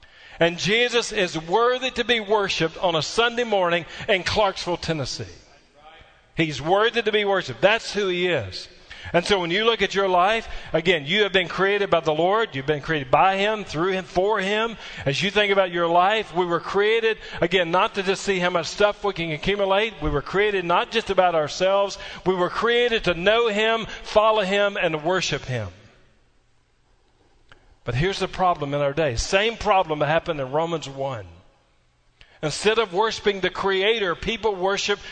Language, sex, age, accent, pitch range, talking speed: English, male, 40-59, American, 165-215 Hz, 185 wpm